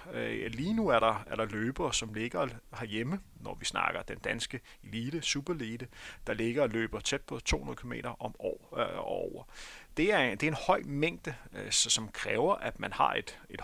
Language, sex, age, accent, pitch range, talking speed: Danish, male, 30-49, native, 115-145 Hz, 160 wpm